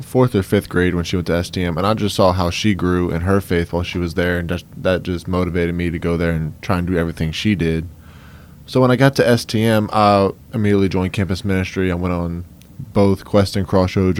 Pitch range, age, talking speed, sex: 85-100 Hz, 10-29, 235 wpm, male